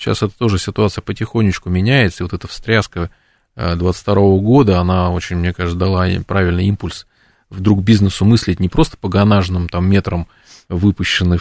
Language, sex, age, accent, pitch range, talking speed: Russian, male, 20-39, native, 90-115 Hz, 155 wpm